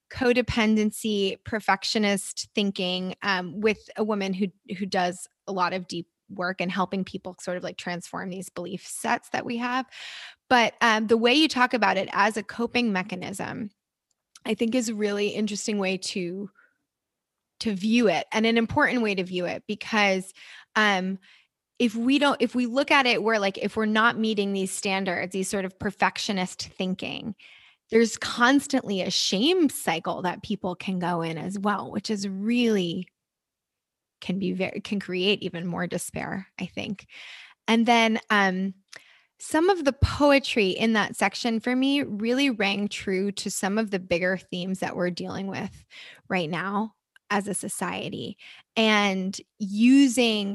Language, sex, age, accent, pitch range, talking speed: English, female, 20-39, American, 190-225 Hz, 165 wpm